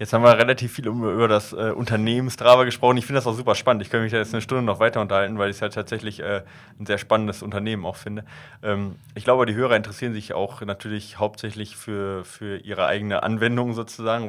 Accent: German